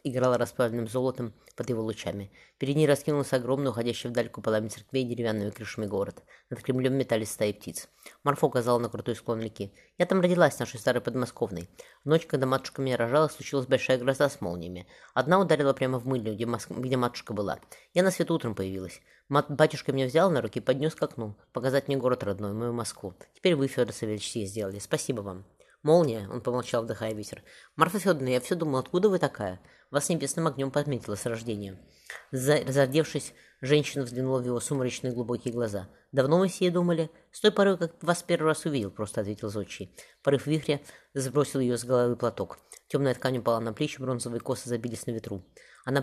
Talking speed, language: 190 wpm, Russian